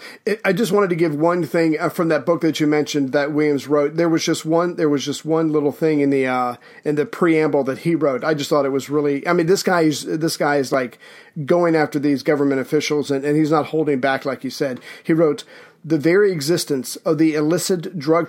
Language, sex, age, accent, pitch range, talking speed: English, male, 40-59, American, 145-165 Hz, 240 wpm